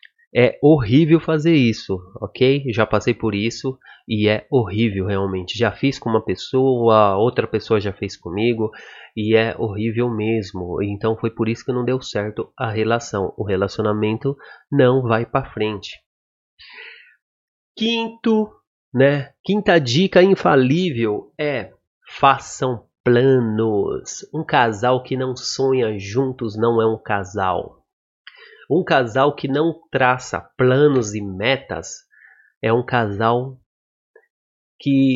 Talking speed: 125 wpm